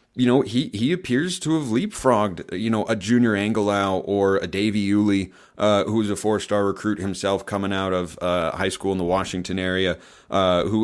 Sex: male